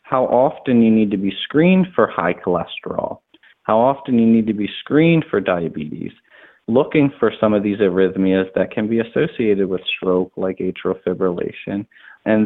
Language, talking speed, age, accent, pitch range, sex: English, 170 wpm, 30-49, American, 100-115 Hz, male